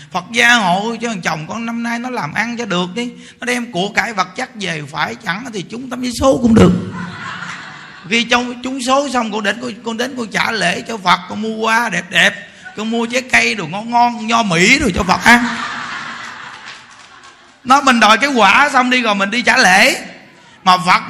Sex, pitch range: male, 195-255 Hz